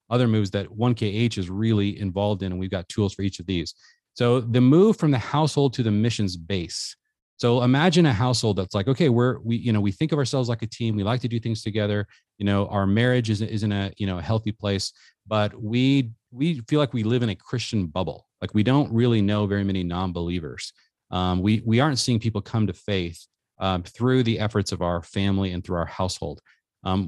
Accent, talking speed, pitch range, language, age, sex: American, 225 wpm, 100-125 Hz, English, 30-49, male